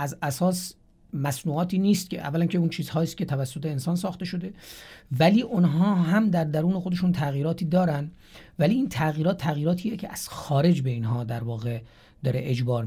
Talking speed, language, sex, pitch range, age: 165 wpm, Persian, male, 135-180 Hz, 40-59